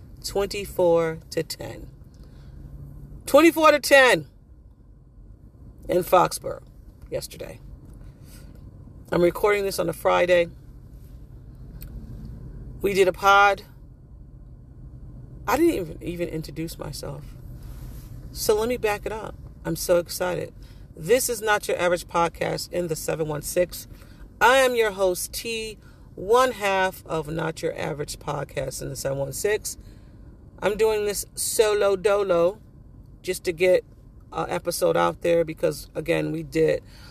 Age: 40-59